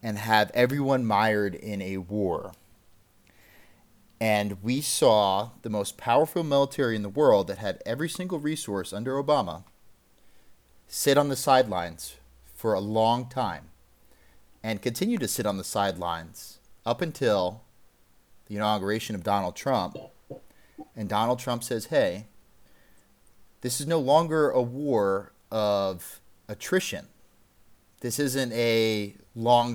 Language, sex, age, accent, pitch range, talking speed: English, male, 30-49, American, 100-140 Hz, 125 wpm